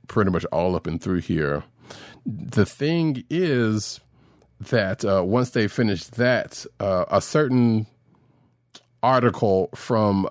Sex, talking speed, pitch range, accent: male, 120 wpm, 100-135 Hz, American